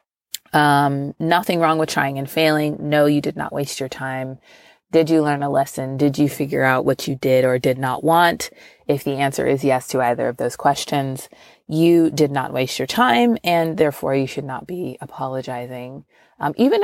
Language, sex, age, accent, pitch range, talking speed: English, female, 30-49, American, 135-170 Hz, 195 wpm